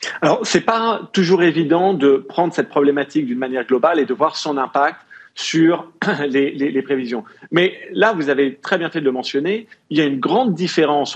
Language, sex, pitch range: French, male, 135-185 Hz